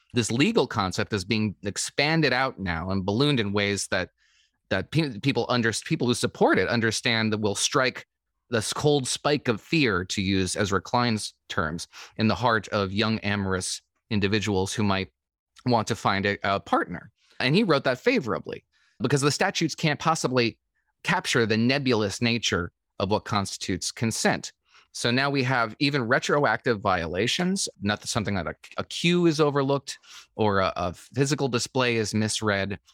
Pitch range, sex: 100-135 Hz, male